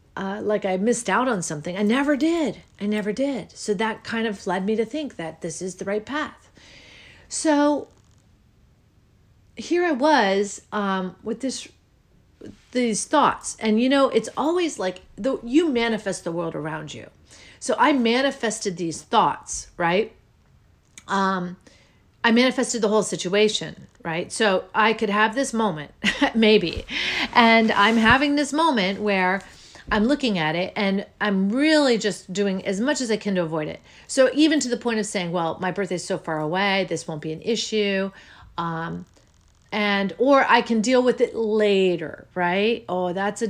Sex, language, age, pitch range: female, English, 40-59, 190-250 Hz